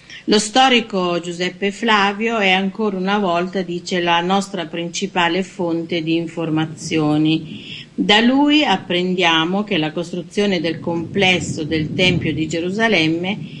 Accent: native